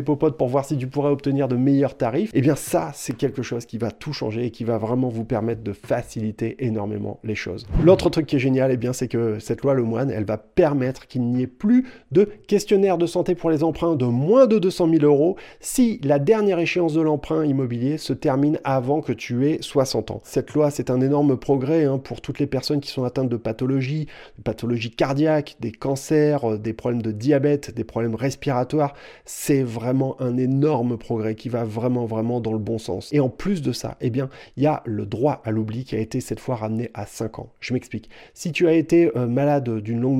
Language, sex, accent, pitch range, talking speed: French, male, French, 115-145 Hz, 225 wpm